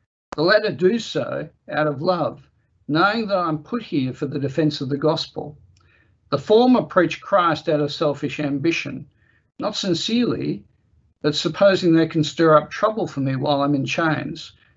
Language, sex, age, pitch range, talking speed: English, male, 60-79, 145-185 Hz, 165 wpm